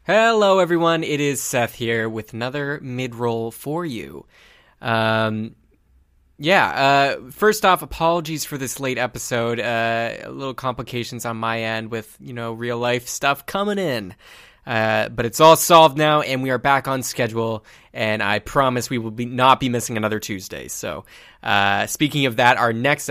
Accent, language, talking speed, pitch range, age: American, English, 165 wpm, 115-160 Hz, 20-39